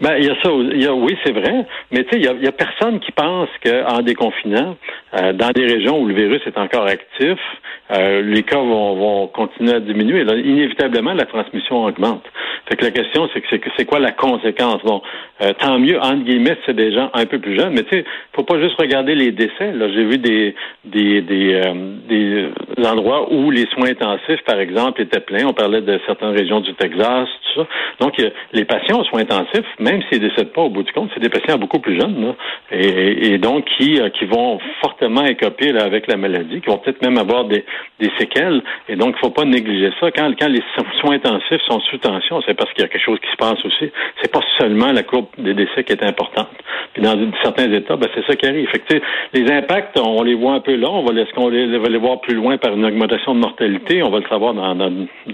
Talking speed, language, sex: 245 wpm, French, male